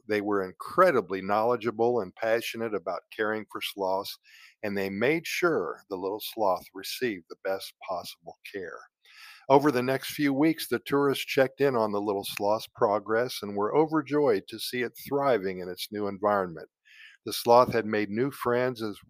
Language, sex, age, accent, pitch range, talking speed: English, male, 50-69, American, 105-135 Hz, 165 wpm